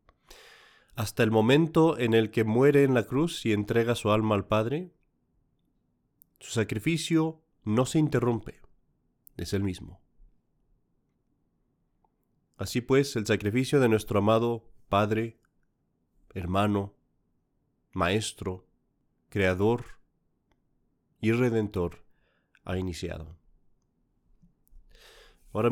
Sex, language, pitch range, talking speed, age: male, Spanish, 100-135 Hz, 95 wpm, 30-49